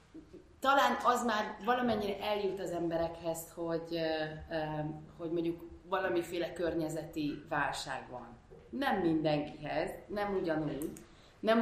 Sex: female